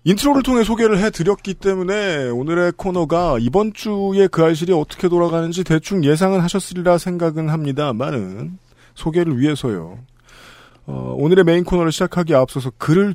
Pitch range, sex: 125-180 Hz, male